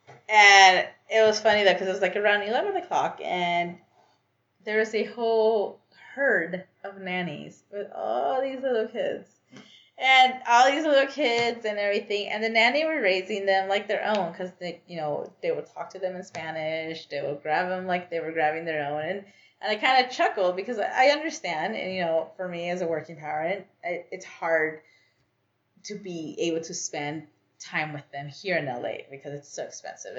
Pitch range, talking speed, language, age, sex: 155-205 Hz, 190 wpm, English, 20-39, female